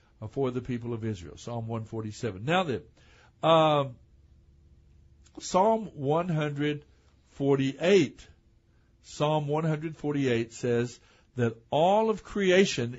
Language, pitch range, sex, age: English, 120-155 Hz, male, 60-79